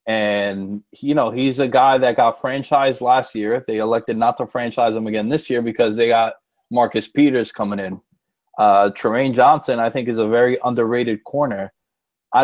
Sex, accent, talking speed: male, American, 185 wpm